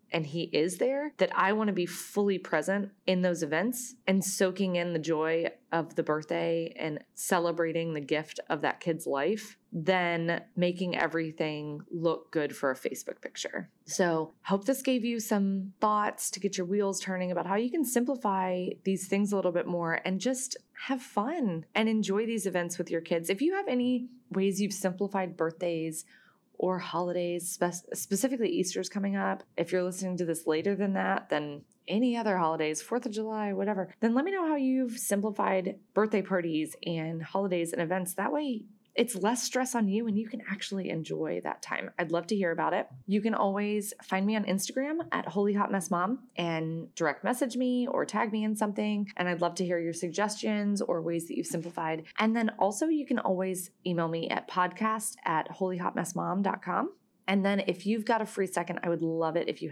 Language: English